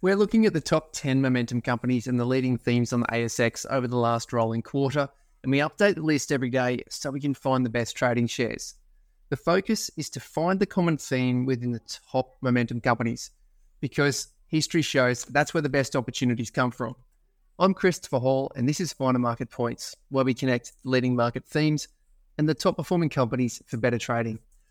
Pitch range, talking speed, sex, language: 120-150 Hz, 195 wpm, male, English